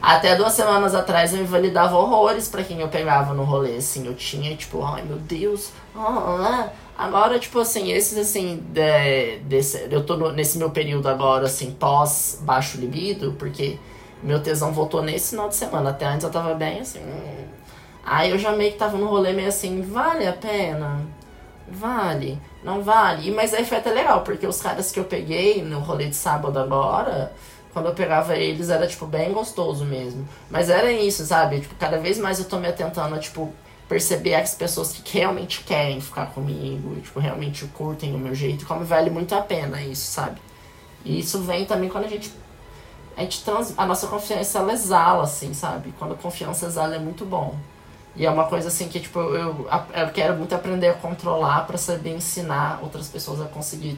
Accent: Brazilian